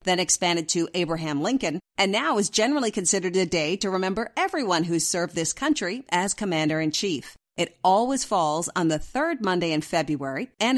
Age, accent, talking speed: 50-69, American, 175 wpm